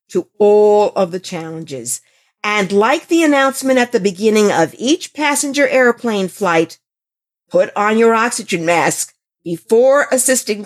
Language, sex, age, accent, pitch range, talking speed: English, female, 50-69, American, 185-245 Hz, 135 wpm